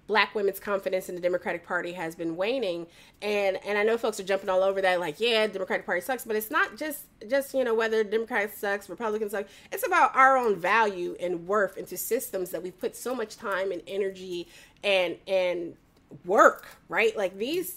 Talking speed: 205 wpm